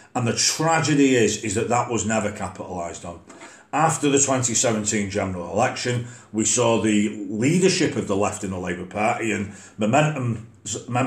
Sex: male